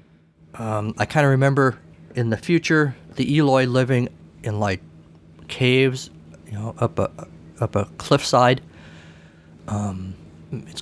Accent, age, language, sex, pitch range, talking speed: American, 50-69, English, male, 80-130 Hz, 130 wpm